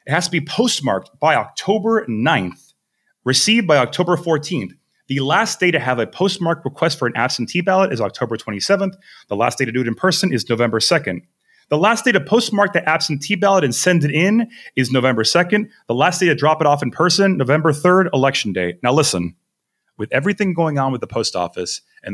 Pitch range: 115-170 Hz